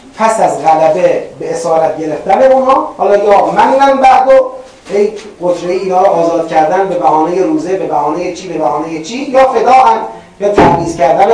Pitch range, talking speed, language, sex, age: 160-215 Hz, 170 wpm, Persian, male, 30-49